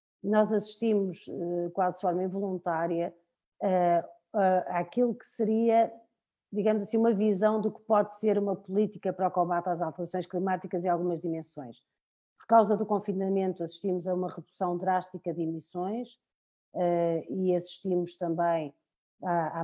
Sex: female